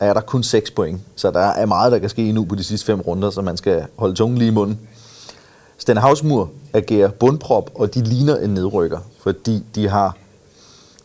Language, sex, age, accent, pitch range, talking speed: Danish, male, 30-49, native, 100-130 Hz, 200 wpm